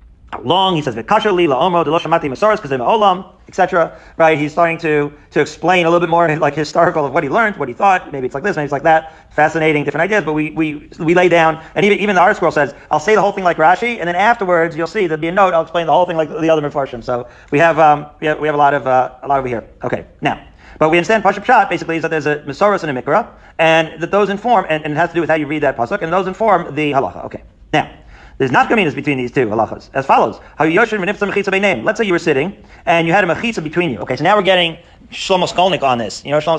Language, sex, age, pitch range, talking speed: English, male, 40-59, 145-185 Hz, 265 wpm